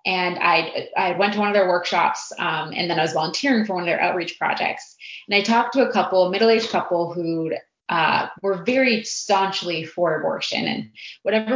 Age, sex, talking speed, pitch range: 20-39, female, 200 wpm, 175-220 Hz